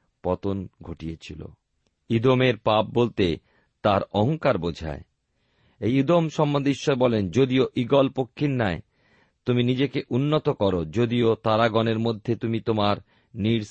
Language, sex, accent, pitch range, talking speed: Bengali, male, native, 90-135 Hz, 120 wpm